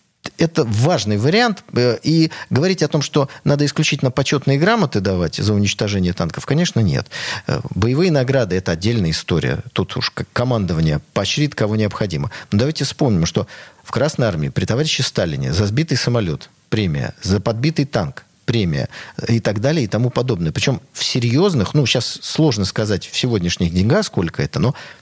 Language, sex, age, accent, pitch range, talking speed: Russian, male, 40-59, native, 110-155 Hz, 160 wpm